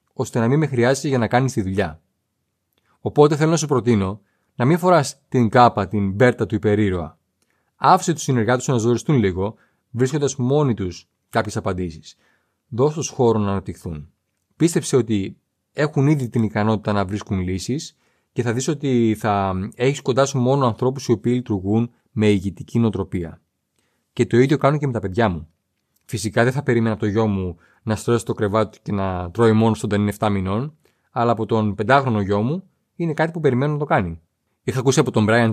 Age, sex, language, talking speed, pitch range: 30-49, male, Greek, 190 wpm, 105-135 Hz